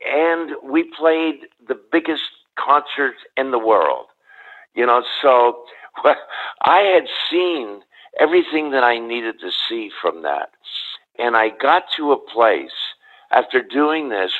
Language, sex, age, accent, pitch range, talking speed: English, male, 50-69, American, 110-155 Hz, 140 wpm